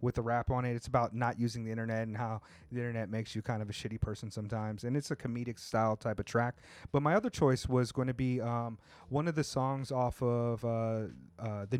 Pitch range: 110-130 Hz